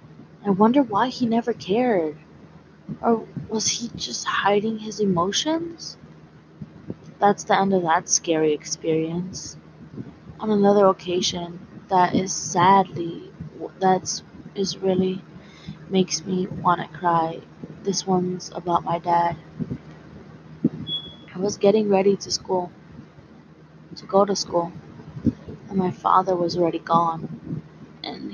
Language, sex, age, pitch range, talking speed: English, female, 20-39, 175-205 Hz, 115 wpm